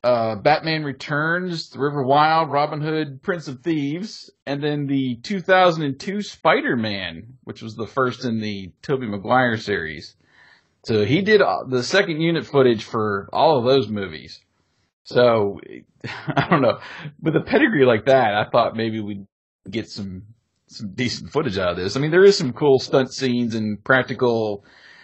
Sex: male